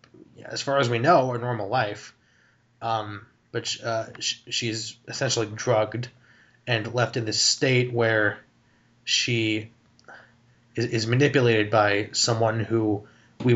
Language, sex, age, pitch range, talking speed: English, male, 20-39, 110-125 Hz, 125 wpm